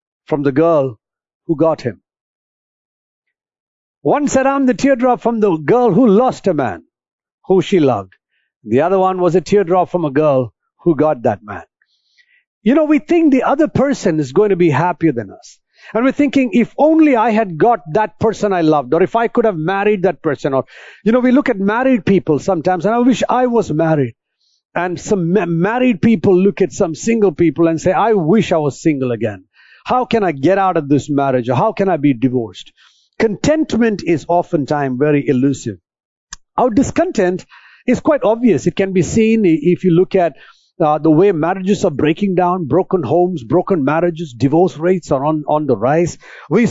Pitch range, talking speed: 160-225 Hz, 195 wpm